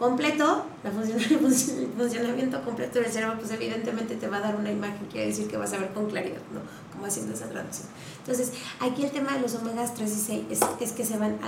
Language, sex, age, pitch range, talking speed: Spanish, female, 20-39, 215-270 Hz, 235 wpm